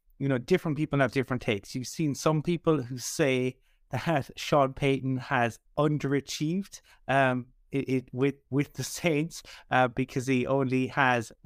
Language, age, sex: English, 30-49, male